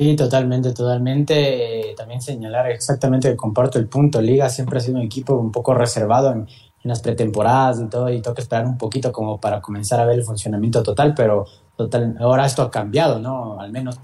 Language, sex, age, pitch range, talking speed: Spanish, male, 20-39, 120-165 Hz, 200 wpm